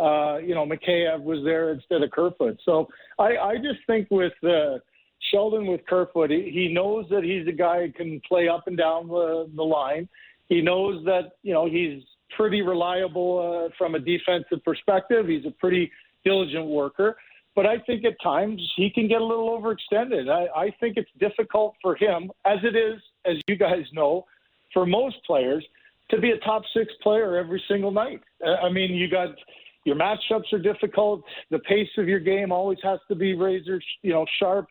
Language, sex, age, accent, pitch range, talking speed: English, male, 50-69, American, 170-205 Hz, 190 wpm